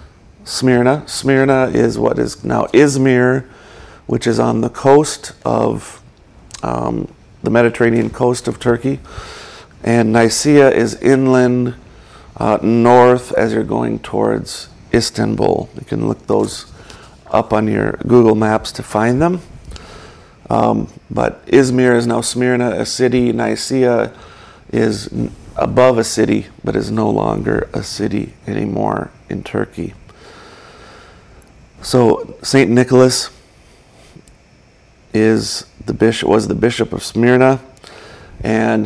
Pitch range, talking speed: 110-125 Hz, 115 wpm